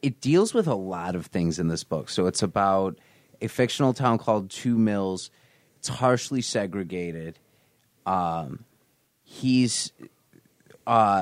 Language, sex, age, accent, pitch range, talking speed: English, male, 30-49, American, 90-115 Hz, 135 wpm